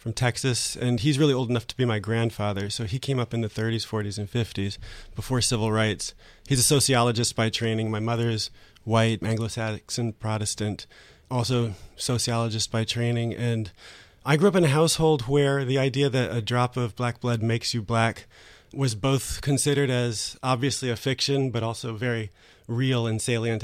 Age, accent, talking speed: 30-49, American, 180 wpm